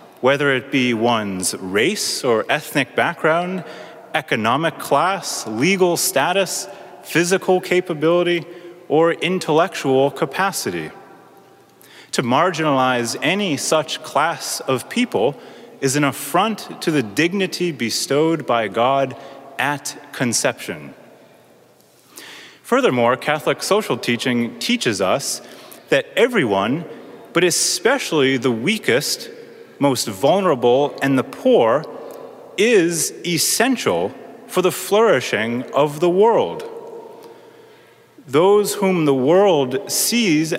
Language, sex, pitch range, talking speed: English, male, 135-210 Hz, 95 wpm